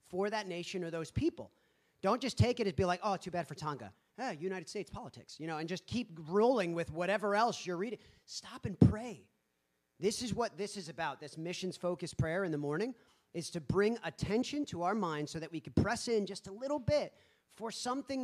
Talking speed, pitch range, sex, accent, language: 220 wpm, 150-205 Hz, male, American, English